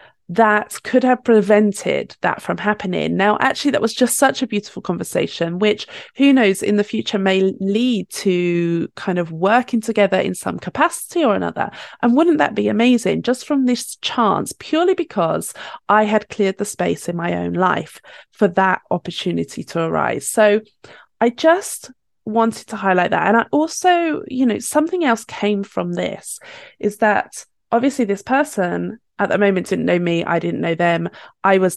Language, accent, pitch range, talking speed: English, British, 175-230 Hz, 175 wpm